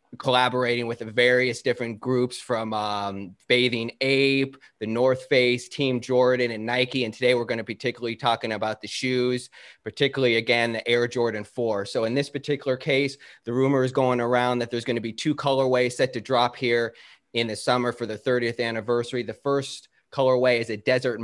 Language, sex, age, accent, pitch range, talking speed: English, male, 30-49, American, 115-130 Hz, 190 wpm